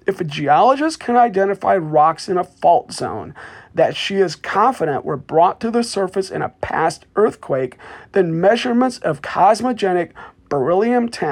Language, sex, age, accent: English, male, 40-59, American